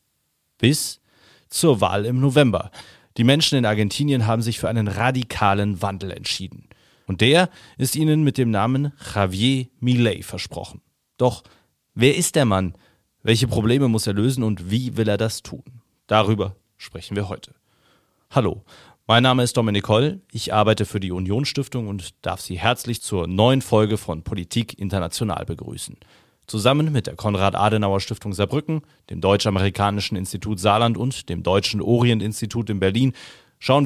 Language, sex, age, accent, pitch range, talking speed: German, male, 40-59, German, 100-125 Hz, 150 wpm